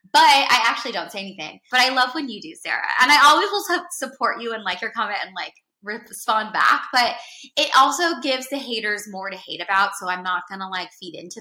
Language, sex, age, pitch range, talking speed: English, female, 20-39, 175-235 Hz, 235 wpm